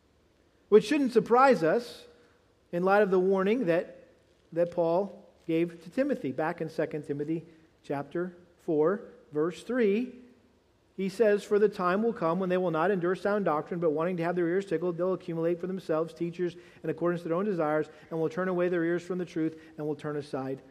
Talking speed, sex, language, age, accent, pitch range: 195 wpm, male, English, 40-59, American, 165-205 Hz